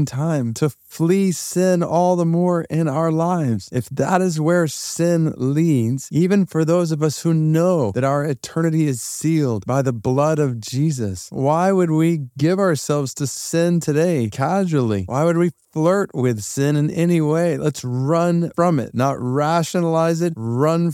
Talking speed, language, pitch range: 170 wpm, English, 105-150 Hz